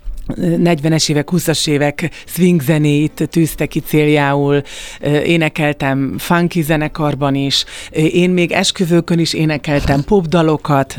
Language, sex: Hungarian, female